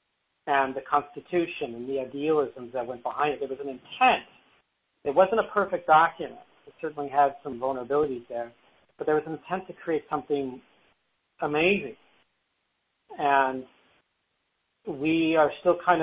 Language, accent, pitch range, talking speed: English, American, 130-155 Hz, 145 wpm